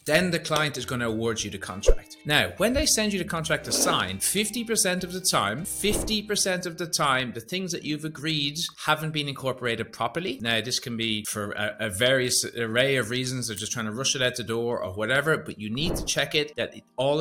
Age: 30-49